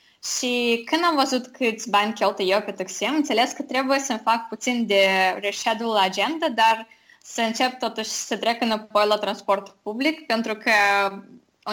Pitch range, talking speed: 200-240 Hz, 175 wpm